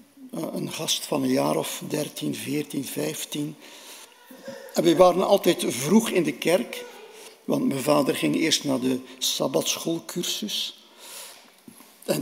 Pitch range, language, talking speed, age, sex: 150-255 Hz, Dutch, 135 wpm, 60-79, male